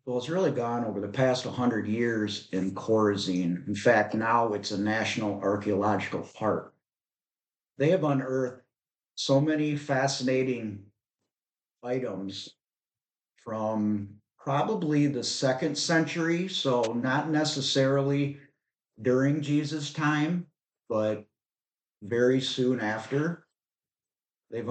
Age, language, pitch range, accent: 50-69, English, 110-140 Hz, American